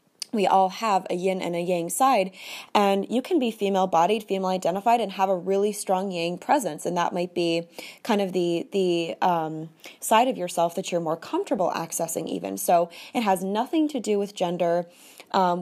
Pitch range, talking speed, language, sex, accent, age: 175-215 Hz, 190 wpm, English, female, American, 20-39